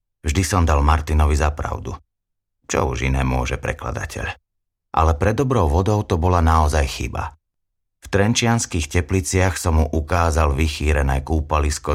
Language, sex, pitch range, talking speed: Slovak, male, 75-100 Hz, 130 wpm